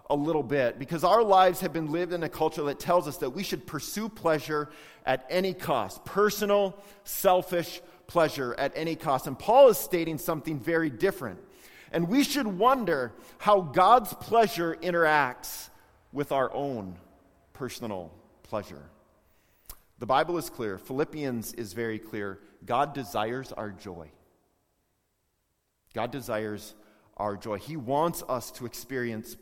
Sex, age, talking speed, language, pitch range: male, 40-59, 145 wpm, English, 125-175 Hz